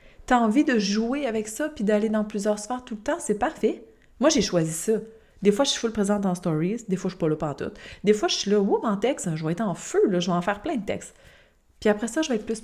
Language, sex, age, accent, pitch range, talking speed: French, female, 30-49, Canadian, 180-230 Hz, 310 wpm